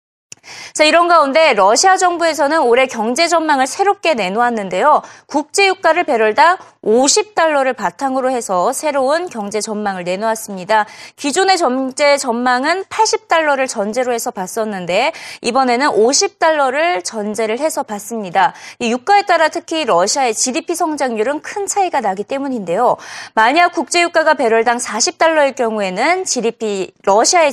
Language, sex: Korean, female